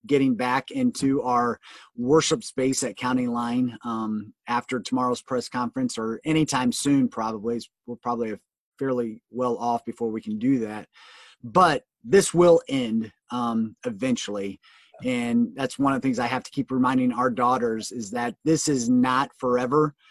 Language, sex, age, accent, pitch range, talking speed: English, male, 30-49, American, 115-150 Hz, 160 wpm